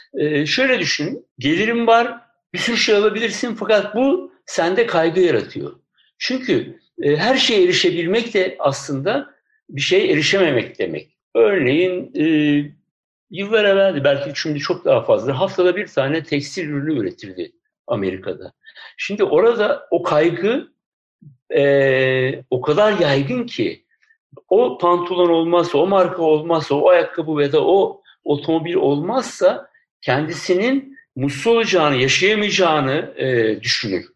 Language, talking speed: Turkish, 120 wpm